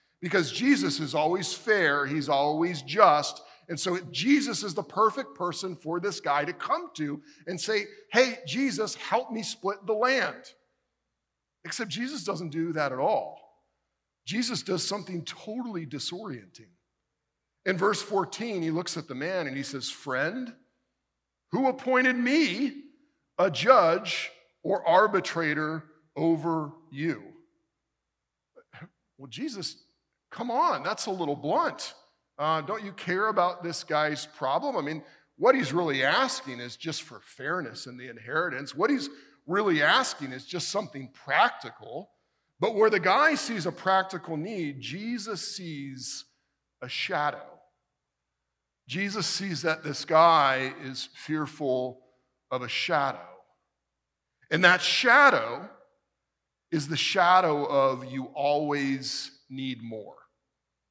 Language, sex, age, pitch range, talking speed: English, male, 50-69, 145-215 Hz, 130 wpm